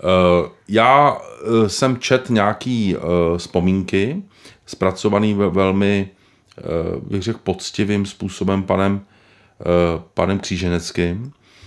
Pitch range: 90-110 Hz